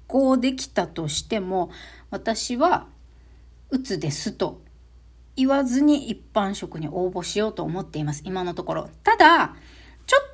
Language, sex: Japanese, female